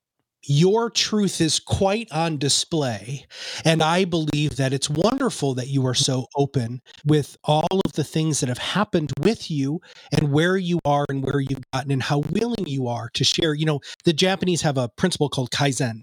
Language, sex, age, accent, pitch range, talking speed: English, male, 30-49, American, 135-185 Hz, 190 wpm